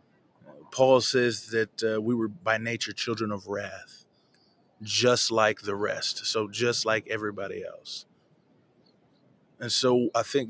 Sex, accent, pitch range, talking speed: male, American, 105-120 Hz, 135 wpm